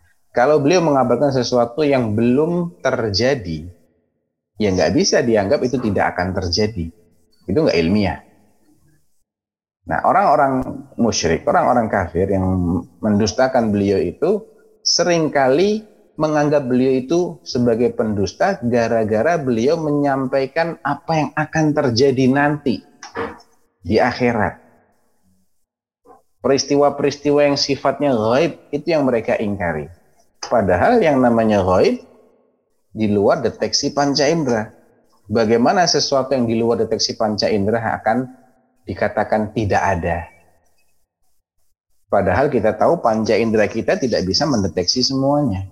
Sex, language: male, Indonesian